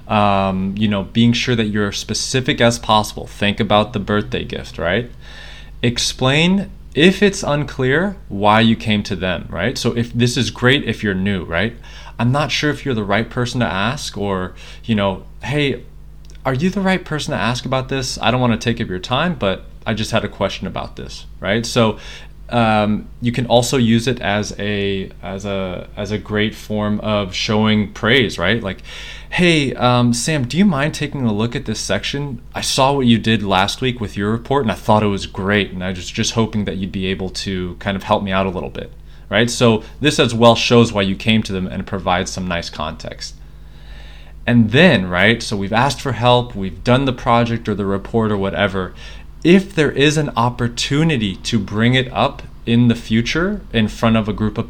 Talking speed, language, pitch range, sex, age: 210 wpm, English, 100-125 Hz, male, 20-39